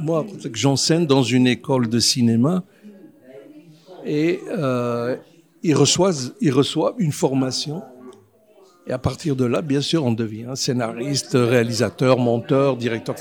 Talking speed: 125 wpm